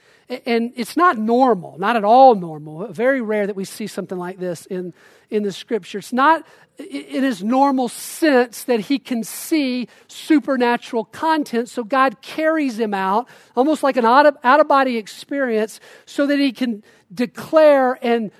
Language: English